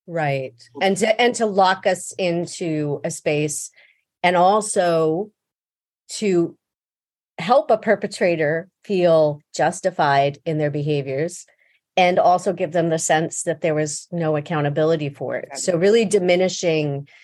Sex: female